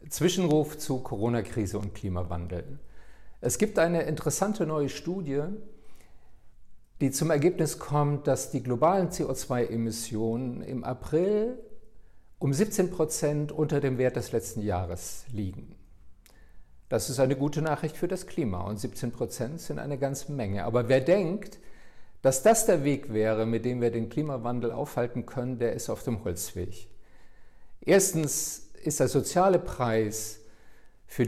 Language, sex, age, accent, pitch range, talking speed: German, male, 50-69, German, 110-145 Hz, 140 wpm